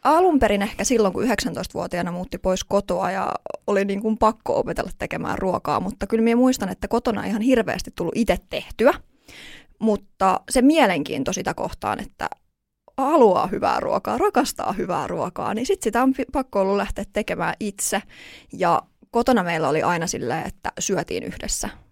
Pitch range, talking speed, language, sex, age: 190-240 Hz, 160 wpm, Finnish, female, 20-39